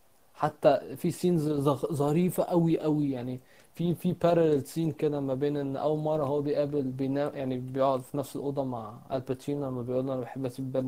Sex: male